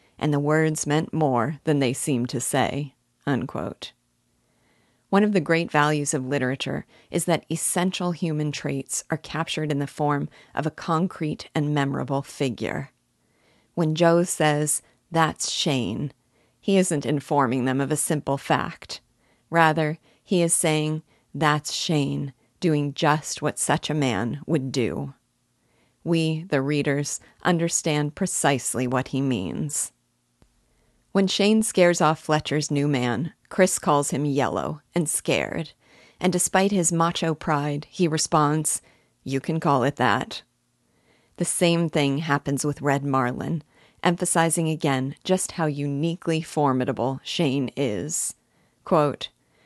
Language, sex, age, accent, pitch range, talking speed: English, female, 40-59, American, 140-165 Hz, 135 wpm